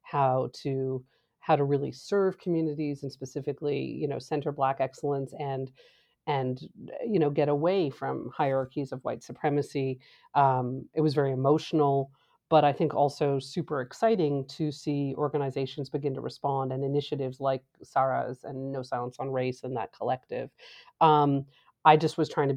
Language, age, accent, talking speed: English, 40-59, American, 160 wpm